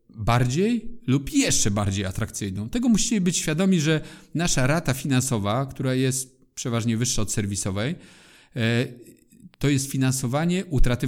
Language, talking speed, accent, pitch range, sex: Polish, 125 wpm, native, 115-140 Hz, male